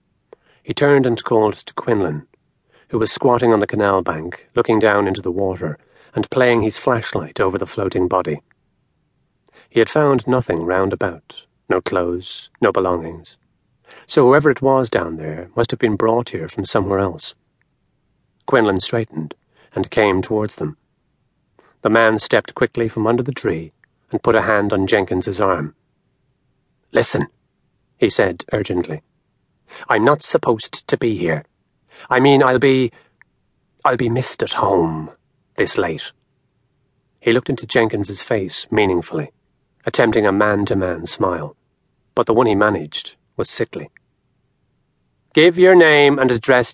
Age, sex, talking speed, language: 40-59, male, 145 wpm, English